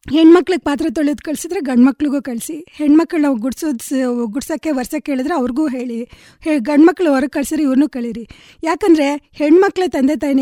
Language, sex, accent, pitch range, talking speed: Kannada, female, native, 250-305 Hz, 145 wpm